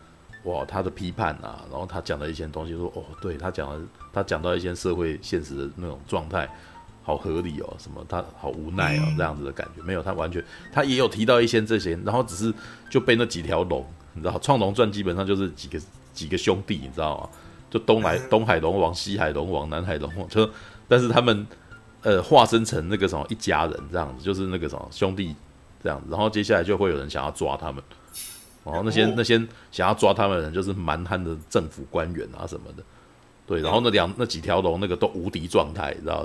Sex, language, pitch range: male, Chinese, 80-110 Hz